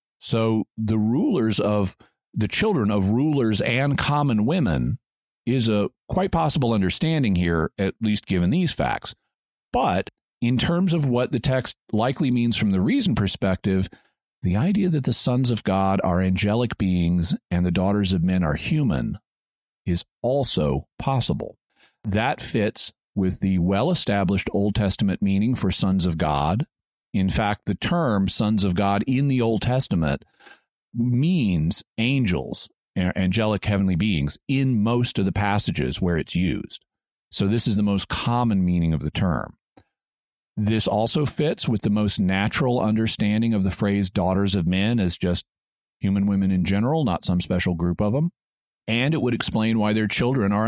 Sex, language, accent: male, English, American